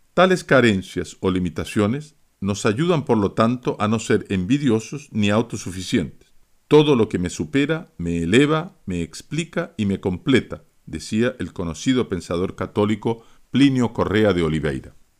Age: 50-69